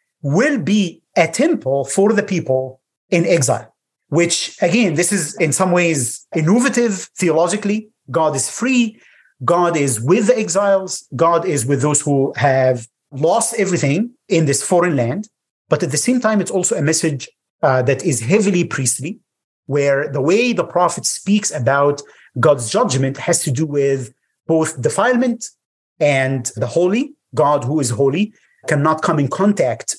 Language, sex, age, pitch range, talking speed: English, male, 30-49, 140-200 Hz, 155 wpm